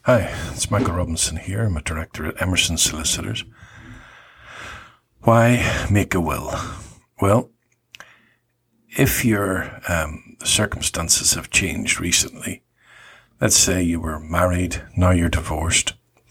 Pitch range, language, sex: 85-105 Hz, English, male